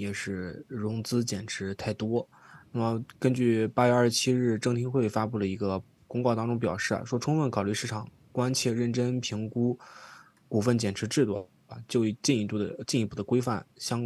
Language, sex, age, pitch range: Chinese, male, 20-39, 105-125 Hz